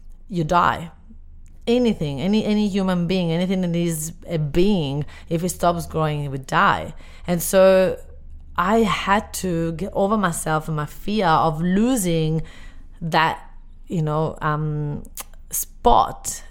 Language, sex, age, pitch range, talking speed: English, female, 30-49, 155-200 Hz, 135 wpm